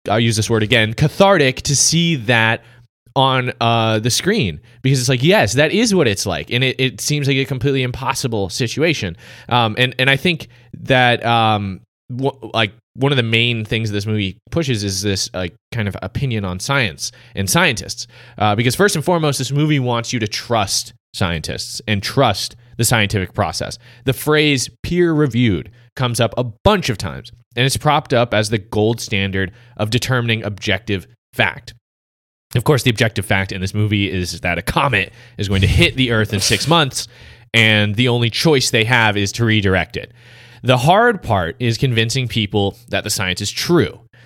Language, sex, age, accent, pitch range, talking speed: English, male, 20-39, American, 105-130 Hz, 185 wpm